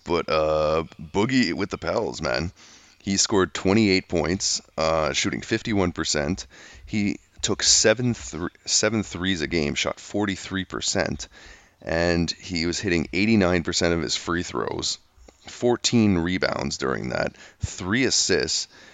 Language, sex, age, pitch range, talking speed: English, male, 30-49, 80-95 Hz, 125 wpm